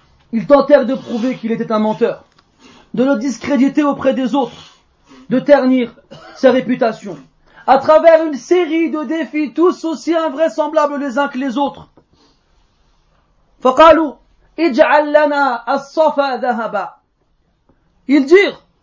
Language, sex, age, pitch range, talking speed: French, male, 40-59, 255-315 Hz, 110 wpm